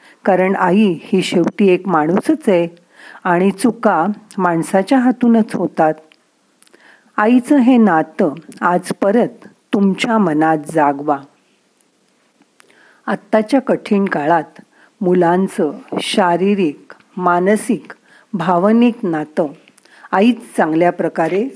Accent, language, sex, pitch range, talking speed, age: native, Marathi, female, 175-235 Hz, 85 wpm, 40-59